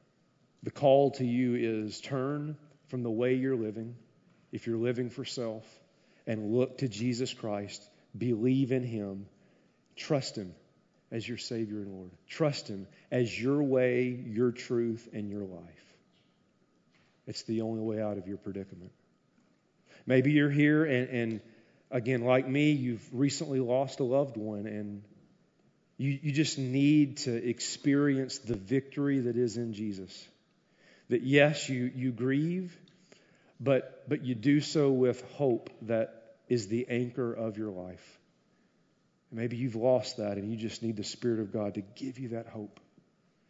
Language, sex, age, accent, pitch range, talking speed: English, male, 40-59, American, 110-135 Hz, 155 wpm